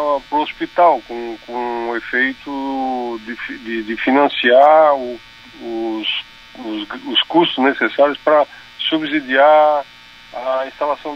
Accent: Brazilian